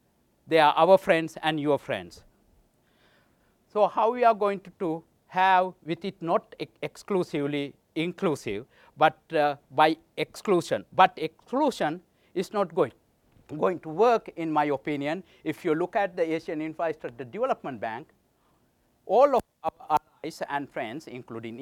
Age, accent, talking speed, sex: 60-79, Indian, 140 wpm, male